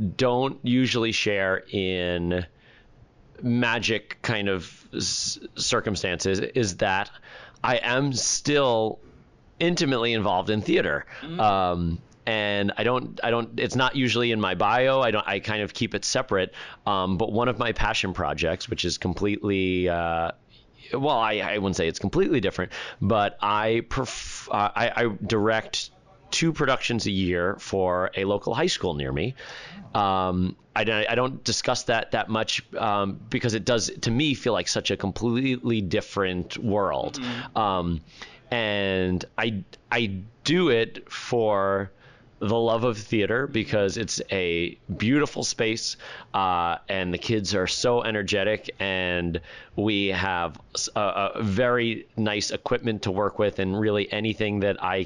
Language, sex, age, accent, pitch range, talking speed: English, male, 30-49, American, 95-120 Hz, 145 wpm